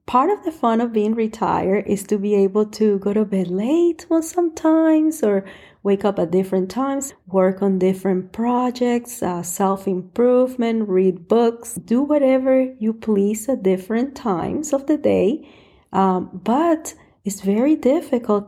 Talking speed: 150 wpm